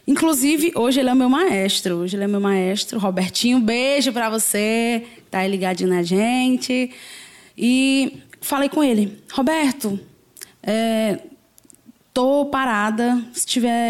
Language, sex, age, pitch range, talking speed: Portuguese, female, 10-29, 210-260 Hz, 145 wpm